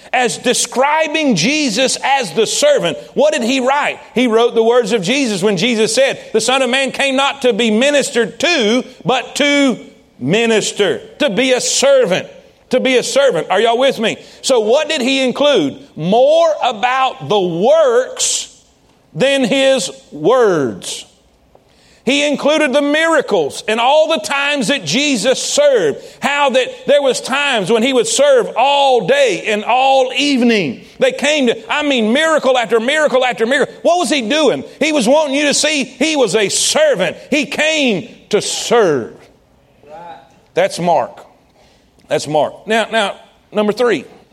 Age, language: 40-59, English